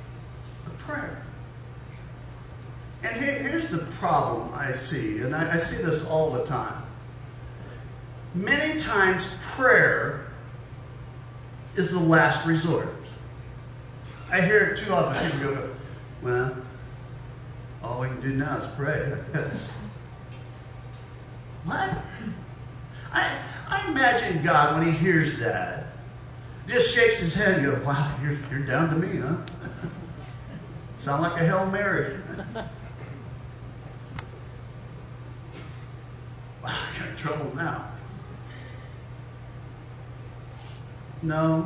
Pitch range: 125-165 Hz